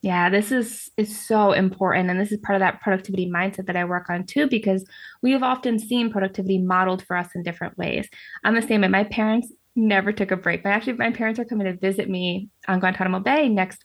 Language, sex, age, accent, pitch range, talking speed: English, female, 20-39, American, 185-245 Hz, 235 wpm